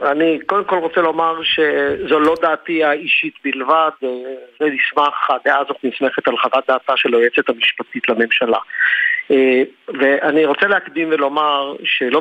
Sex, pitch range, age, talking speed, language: male, 130-160 Hz, 50-69, 130 wpm, Hebrew